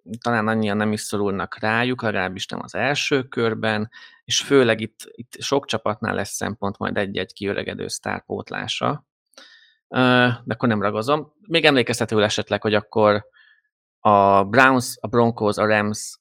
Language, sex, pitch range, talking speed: Hungarian, male, 105-135 Hz, 140 wpm